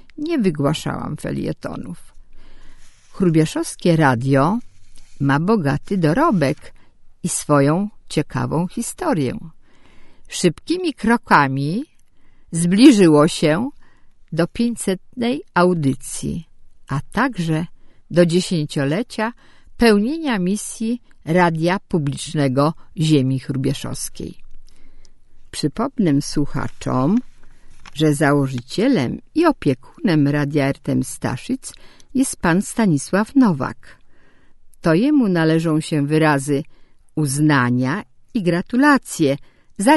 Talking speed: 80 wpm